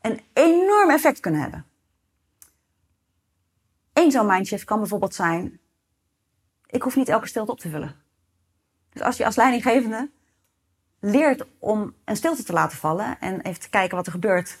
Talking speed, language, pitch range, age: 155 wpm, Dutch, 170-265 Hz, 30-49